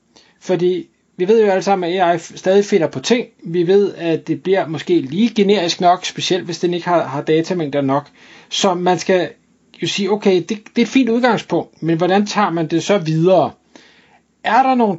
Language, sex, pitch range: Danish, male, 150-190 Hz